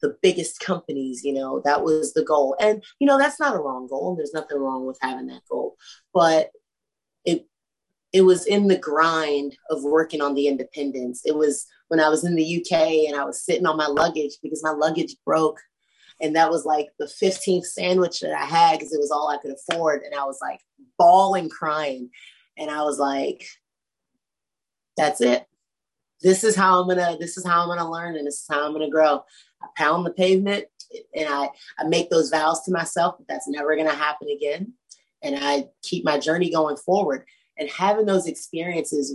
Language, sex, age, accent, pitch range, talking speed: English, female, 30-49, American, 145-175 Hz, 195 wpm